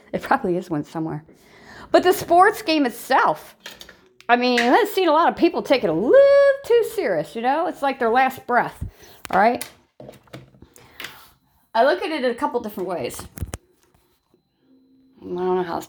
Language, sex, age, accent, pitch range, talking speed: English, female, 40-59, American, 175-250 Hz, 175 wpm